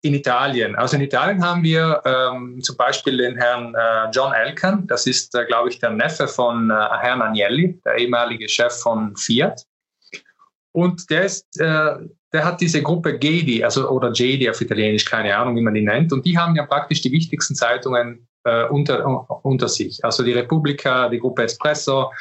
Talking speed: 190 wpm